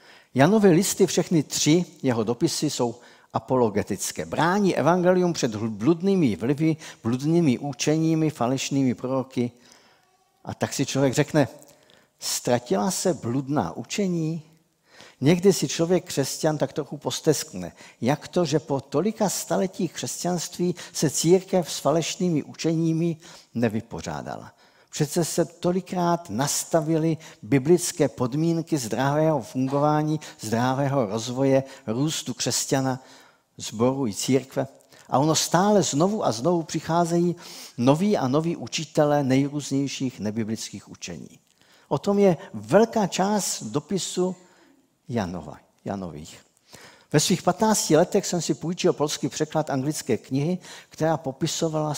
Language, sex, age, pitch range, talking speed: Czech, male, 50-69, 135-175 Hz, 110 wpm